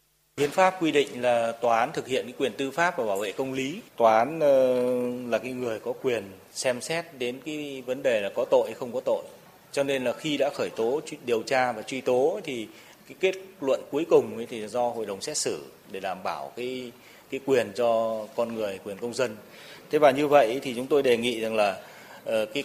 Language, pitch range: Vietnamese, 115-155 Hz